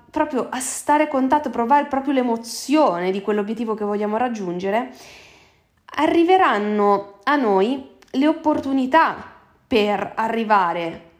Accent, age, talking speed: native, 20-39, 100 wpm